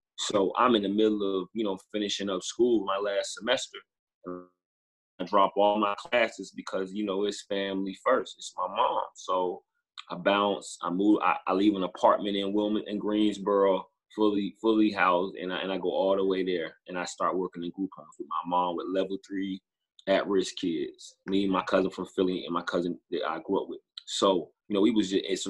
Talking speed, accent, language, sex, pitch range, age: 210 wpm, American, English, male, 90-105 Hz, 20-39